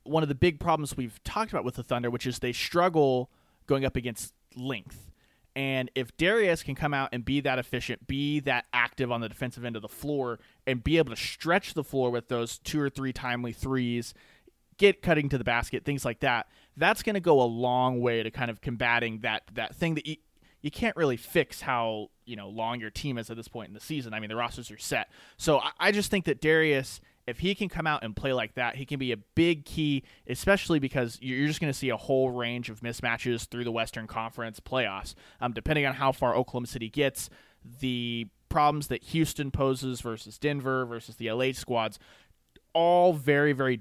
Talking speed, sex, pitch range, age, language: 220 wpm, male, 115-140 Hz, 30-49, English